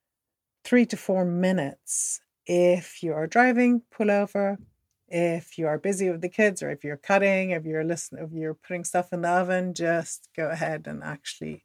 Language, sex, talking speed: English, female, 180 wpm